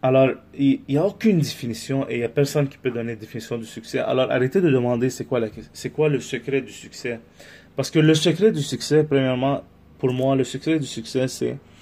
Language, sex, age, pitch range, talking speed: French, male, 30-49, 110-140 Hz, 230 wpm